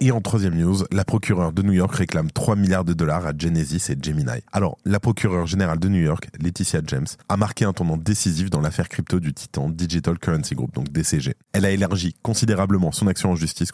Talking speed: 220 wpm